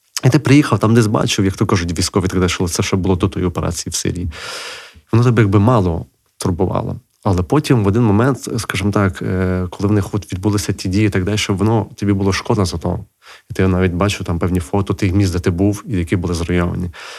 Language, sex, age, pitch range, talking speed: Ukrainian, male, 30-49, 90-110 Hz, 225 wpm